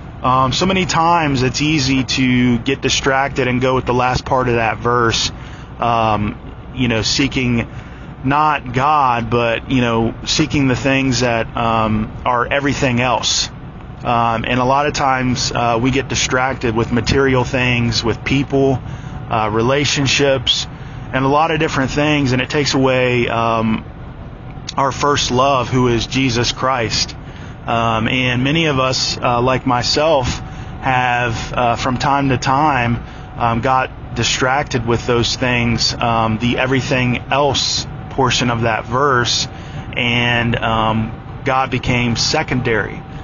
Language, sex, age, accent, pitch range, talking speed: English, male, 20-39, American, 120-135 Hz, 145 wpm